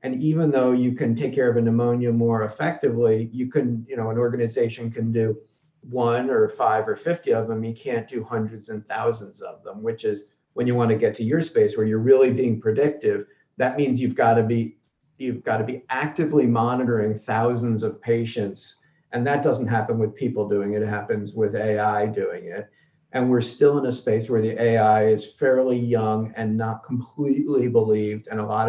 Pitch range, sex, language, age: 110-130 Hz, male, English, 40-59